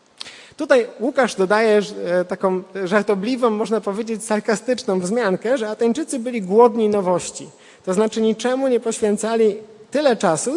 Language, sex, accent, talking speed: Polish, male, native, 120 wpm